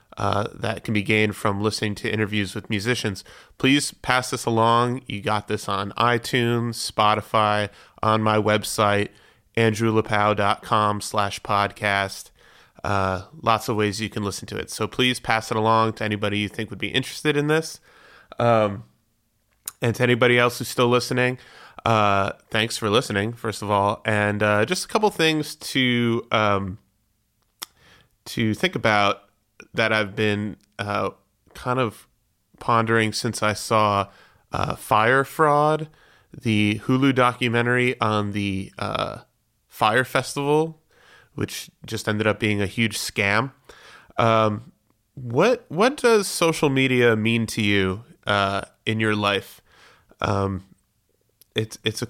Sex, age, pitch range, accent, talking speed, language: male, 30-49, 105-125 Hz, American, 140 wpm, English